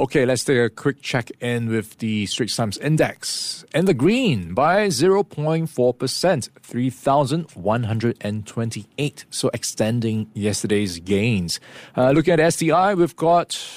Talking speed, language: 120 wpm, English